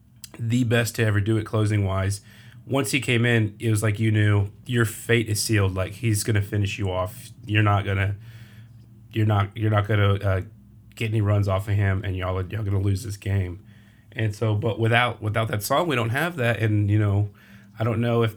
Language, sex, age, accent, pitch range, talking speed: English, male, 30-49, American, 100-115 Hz, 230 wpm